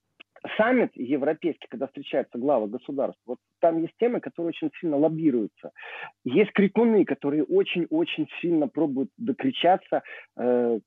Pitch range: 130-190 Hz